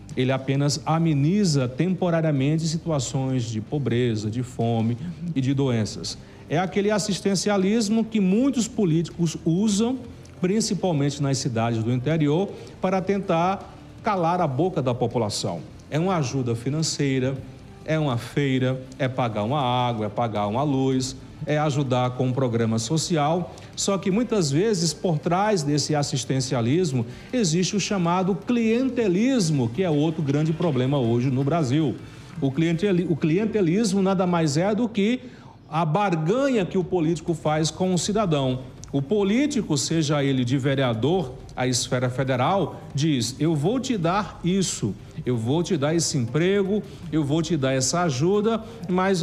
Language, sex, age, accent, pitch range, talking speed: Portuguese, male, 40-59, Brazilian, 130-185 Hz, 140 wpm